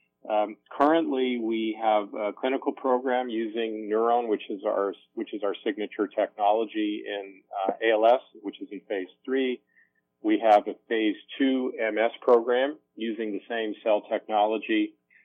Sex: male